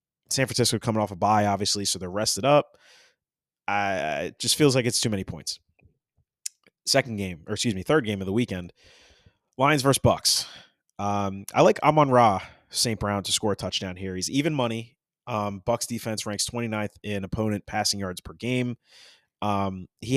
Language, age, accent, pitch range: English, 30-49, American, 100-120 Hz